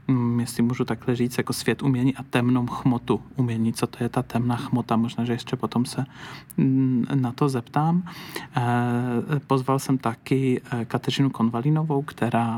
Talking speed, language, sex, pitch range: 150 wpm, Czech, male, 120-130 Hz